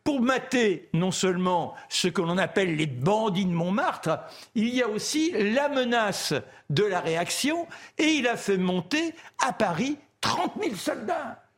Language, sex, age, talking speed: French, male, 60-79, 160 wpm